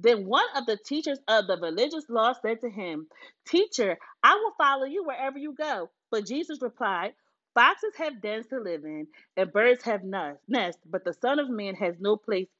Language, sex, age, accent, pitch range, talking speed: English, female, 30-49, American, 200-310 Hz, 195 wpm